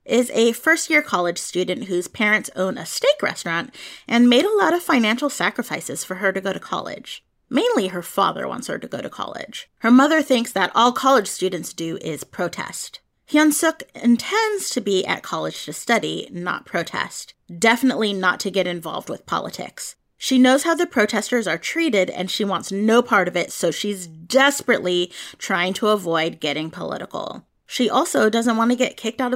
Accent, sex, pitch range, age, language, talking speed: American, female, 185-255 Hz, 30-49, English, 185 wpm